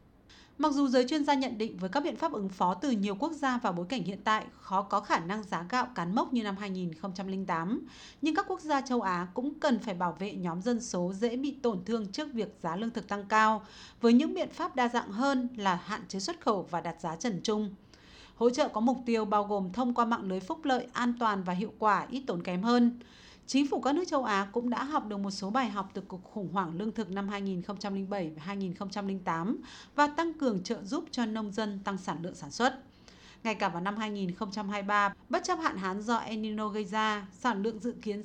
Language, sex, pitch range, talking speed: Vietnamese, female, 200-260 Hz, 235 wpm